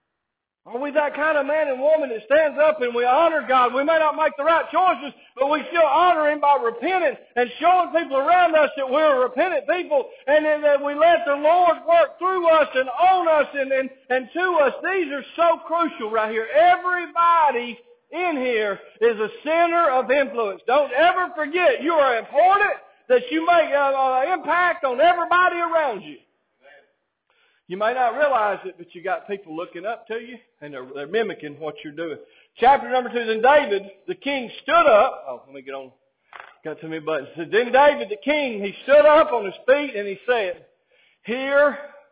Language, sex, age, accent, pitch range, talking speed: English, male, 50-69, American, 230-325 Hz, 195 wpm